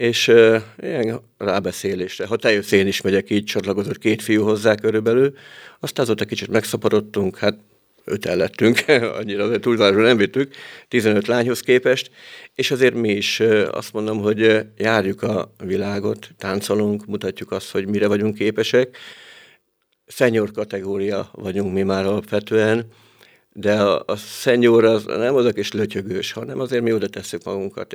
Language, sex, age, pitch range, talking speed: Hungarian, male, 50-69, 100-110 Hz, 135 wpm